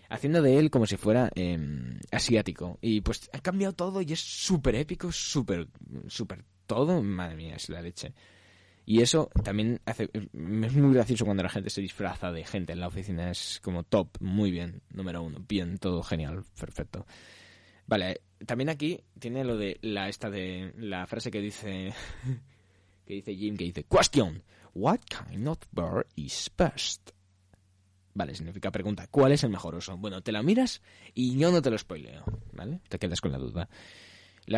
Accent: Spanish